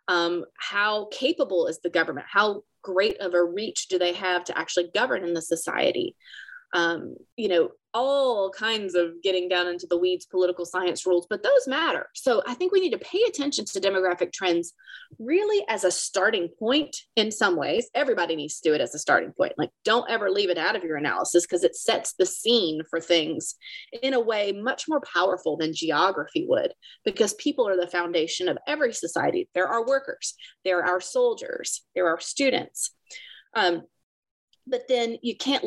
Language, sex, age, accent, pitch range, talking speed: English, female, 20-39, American, 175-275 Hz, 190 wpm